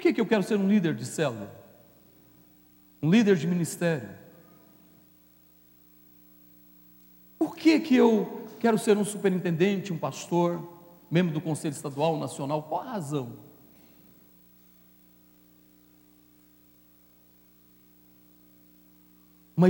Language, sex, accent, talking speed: Portuguese, male, Brazilian, 100 wpm